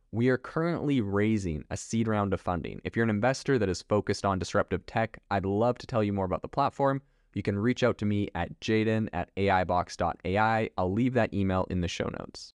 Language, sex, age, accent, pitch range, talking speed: English, male, 20-39, American, 90-110 Hz, 220 wpm